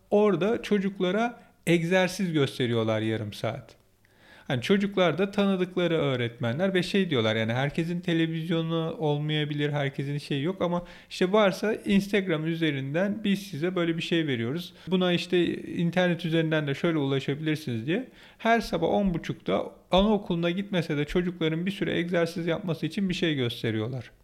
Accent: native